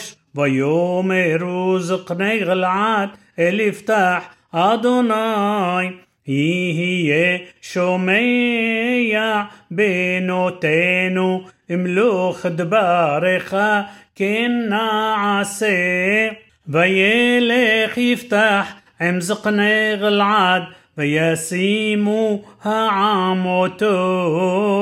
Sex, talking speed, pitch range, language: male, 50 wpm, 180-210 Hz, Hebrew